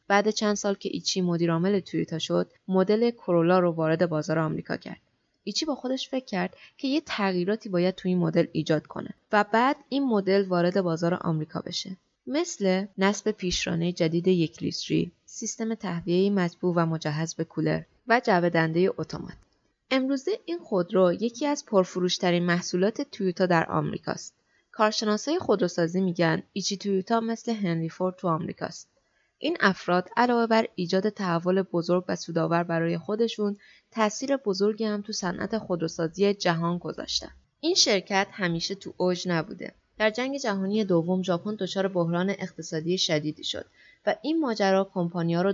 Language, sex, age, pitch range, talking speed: Persian, female, 20-39, 175-215 Hz, 150 wpm